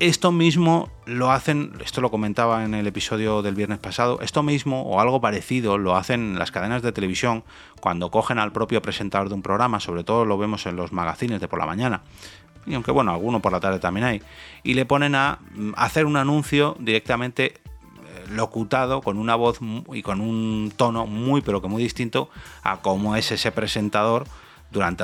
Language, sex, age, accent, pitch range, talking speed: Spanish, male, 30-49, Spanish, 100-130 Hz, 190 wpm